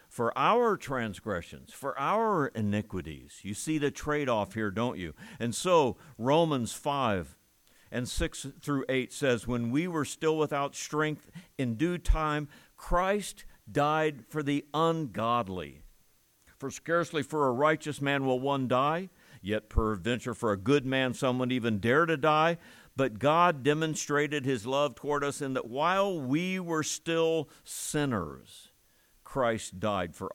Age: 60-79